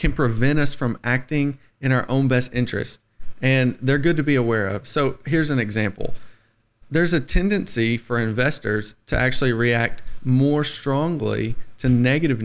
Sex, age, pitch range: male, 40-59, 110-135 Hz